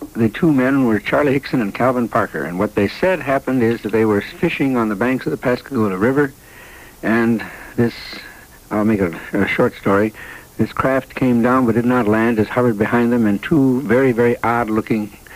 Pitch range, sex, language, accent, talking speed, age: 105-130 Hz, male, English, American, 200 wpm, 60-79